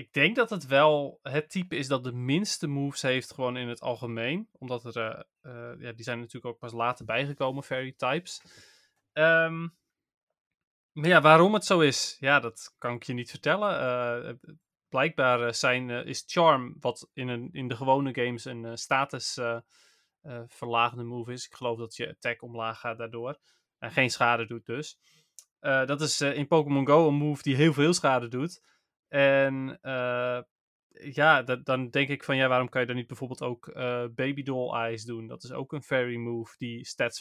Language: Dutch